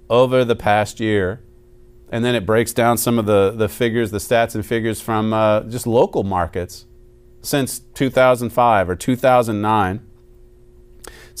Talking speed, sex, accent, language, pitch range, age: 145 wpm, male, American, English, 105-135 Hz, 40-59